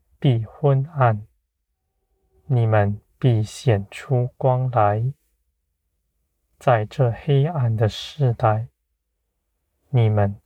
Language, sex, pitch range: Chinese, male, 75-120 Hz